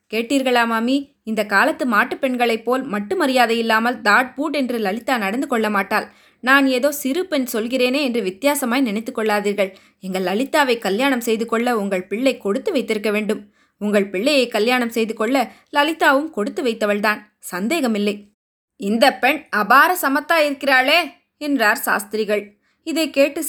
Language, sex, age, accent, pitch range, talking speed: Tamil, female, 20-39, native, 220-285 Hz, 130 wpm